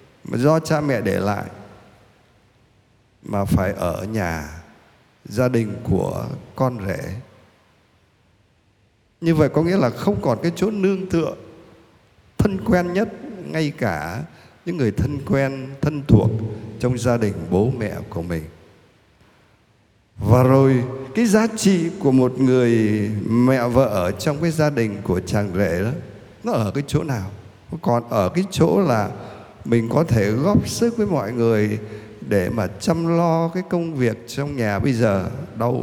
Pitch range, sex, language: 105-135 Hz, male, Vietnamese